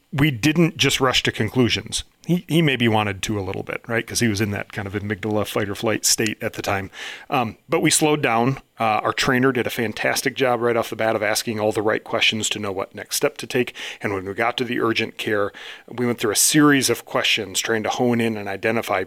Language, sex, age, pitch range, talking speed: English, male, 40-59, 110-135 Hz, 250 wpm